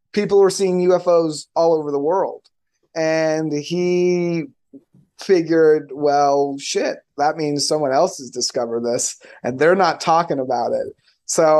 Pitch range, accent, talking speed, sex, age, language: 140-165 Hz, American, 140 wpm, male, 30-49, English